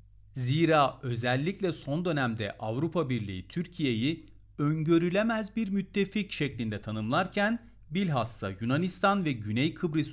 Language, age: Turkish, 40-59